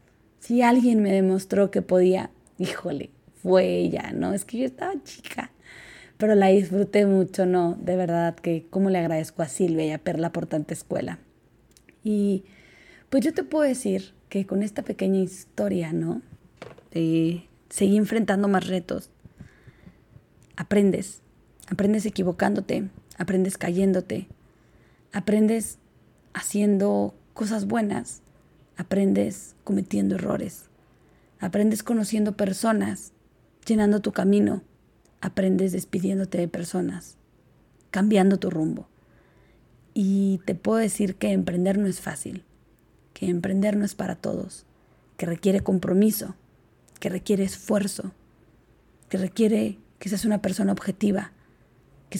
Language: Spanish